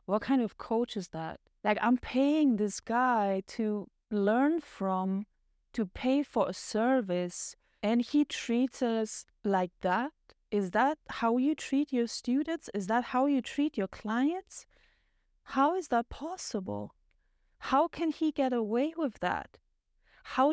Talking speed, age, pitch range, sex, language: 150 wpm, 30-49, 205-255 Hz, female, English